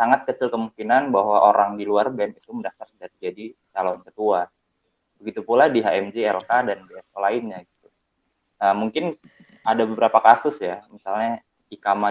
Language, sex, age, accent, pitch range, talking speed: Indonesian, male, 20-39, native, 100-120 Hz, 145 wpm